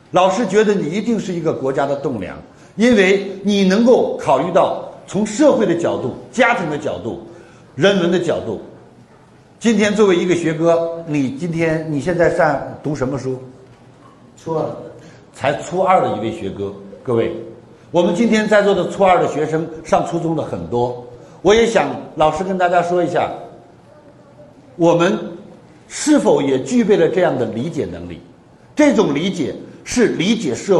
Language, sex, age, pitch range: Chinese, male, 50-69, 145-215 Hz